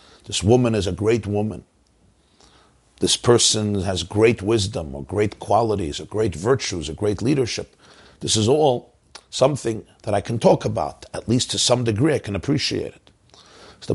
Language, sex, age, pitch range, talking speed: English, male, 50-69, 100-135 Hz, 170 wpm